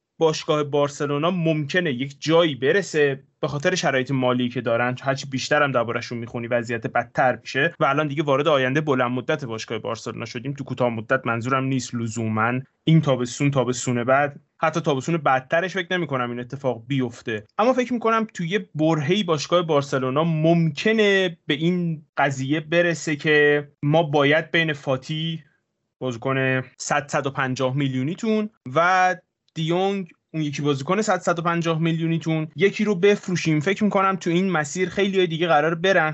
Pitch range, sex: 135-170 Hz, male